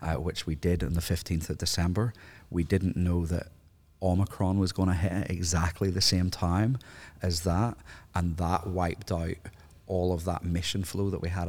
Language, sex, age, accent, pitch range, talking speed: English, male, 30-49, British, 80-95 Hz, 185 wpm